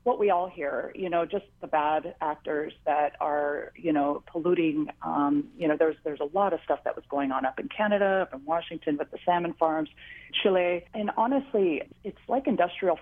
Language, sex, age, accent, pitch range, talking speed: English, female, 40-59, American, 155-205 Hz, 205 wpm